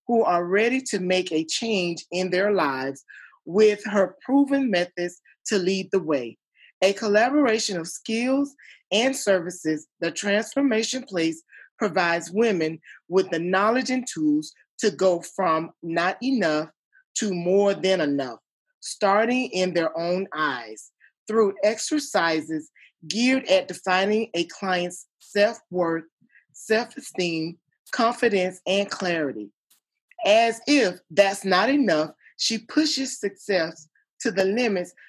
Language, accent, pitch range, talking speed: English, American, 170-230 Hz, 120 wpm